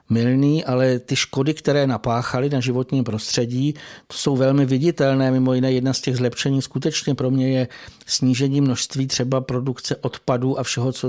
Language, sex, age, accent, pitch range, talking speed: Czech, male, 60-79, native, 125-145 Hz, 160 wpm